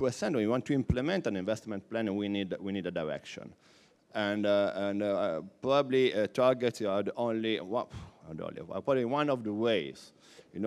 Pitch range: 95-115 Hz